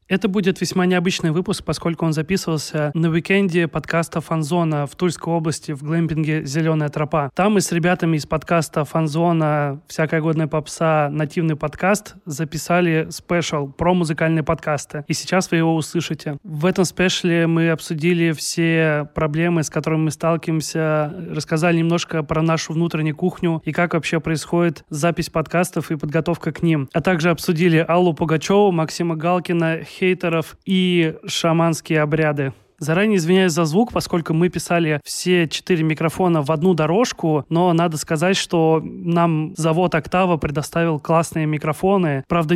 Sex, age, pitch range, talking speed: male, 30-49, 155-175 Hz, 145 wpm